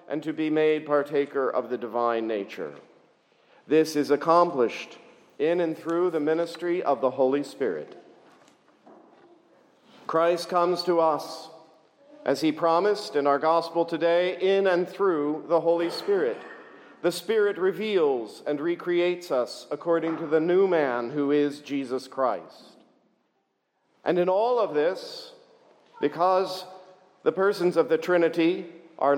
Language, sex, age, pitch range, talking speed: English, male, 50-69, 145-195 Hz, 135 wpm